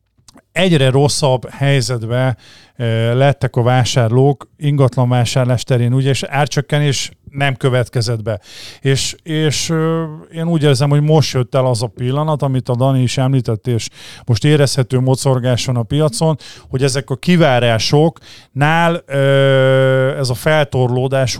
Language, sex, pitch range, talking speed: Hungarian, male, 120-140 Hz, 135 wpm